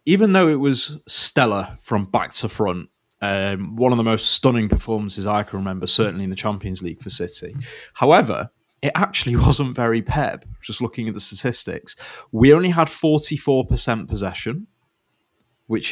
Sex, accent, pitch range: male, British, 105-135 Hz